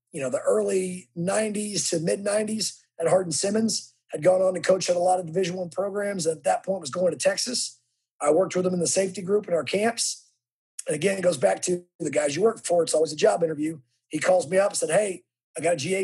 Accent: American